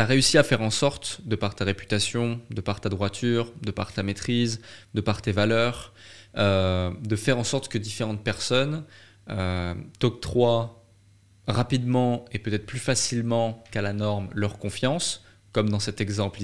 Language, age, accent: French, 20-39, French